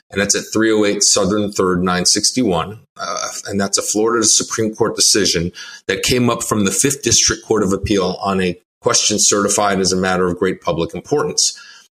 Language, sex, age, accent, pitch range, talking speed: English, male, 30-49, American, 95-115 Hz, 180 wpm